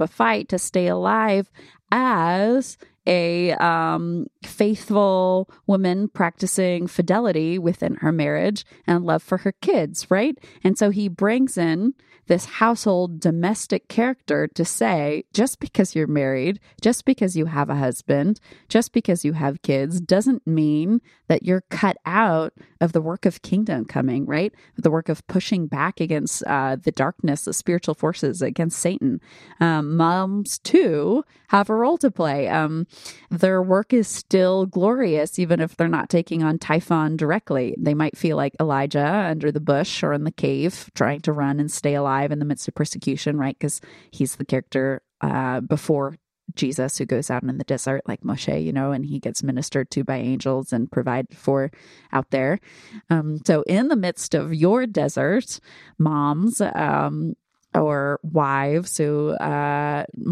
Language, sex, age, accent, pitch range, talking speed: English, female, 30-49, American, 145-195 Hz, 160 wpm